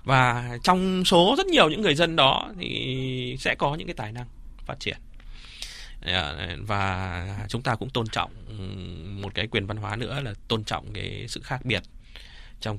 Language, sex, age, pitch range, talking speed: Vietnamese, male, 20-39, 105-130 Hz, 180 wpm